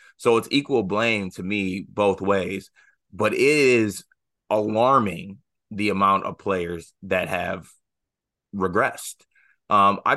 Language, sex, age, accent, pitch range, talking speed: English, male, 20-39, American, 95-110 Hz, 125 wpm